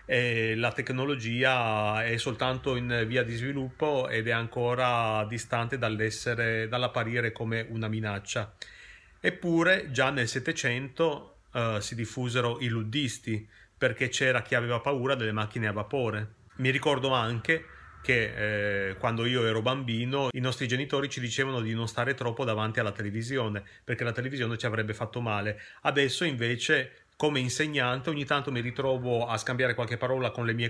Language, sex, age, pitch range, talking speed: Italian, male, 30-49, 115-130 Hz, 155 wpm